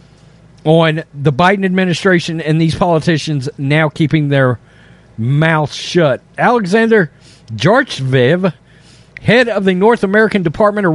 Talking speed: 115 wpm